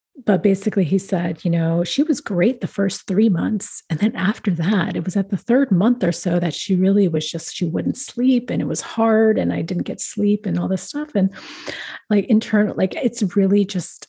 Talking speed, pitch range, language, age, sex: 225 wpm, 175-220 Hz, English, 30-49, female